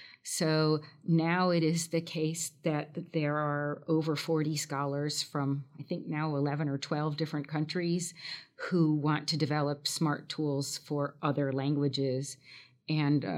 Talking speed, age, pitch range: 140 wpm, 40-59, 140-160 Hz